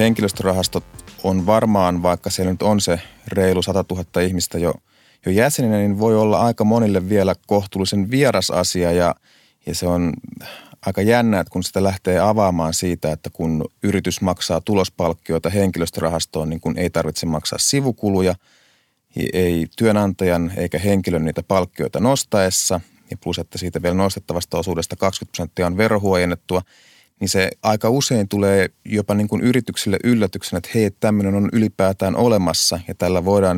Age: 30-49